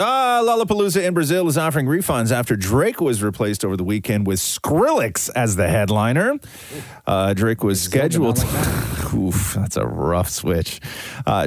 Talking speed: 155 wpm